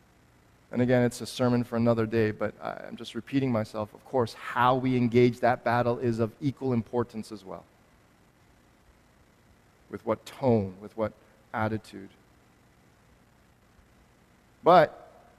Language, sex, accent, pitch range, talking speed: English, male, American, 110-135 Hz, 130 wpm